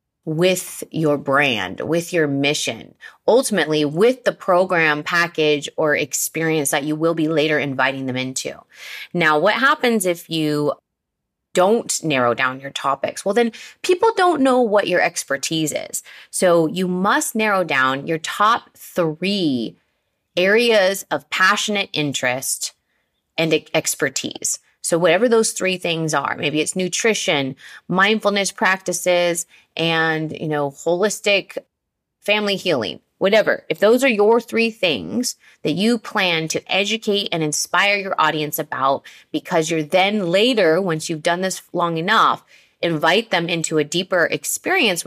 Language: English